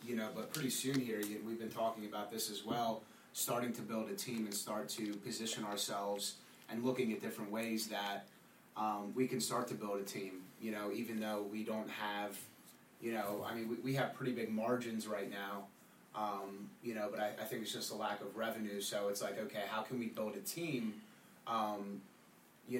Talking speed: 215 wpm